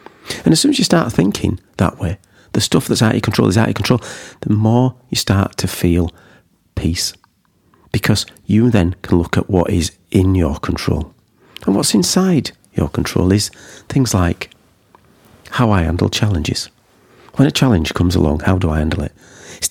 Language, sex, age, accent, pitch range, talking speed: English, male, 40-59, British, 90-120 Hz, 190 wpm